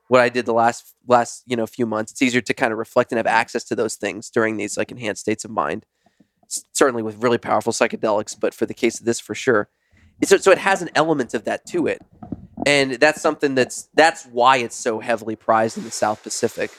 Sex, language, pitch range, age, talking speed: male, English, 110-130 Hz, 20-39, 240 wpm